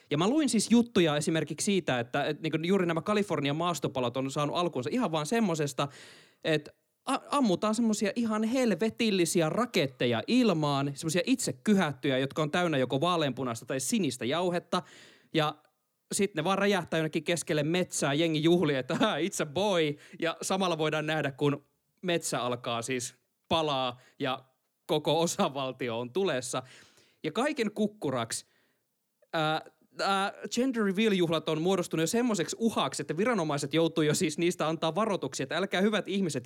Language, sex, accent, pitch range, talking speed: Finnish, male, native, 135-195 Hz, 145 wpm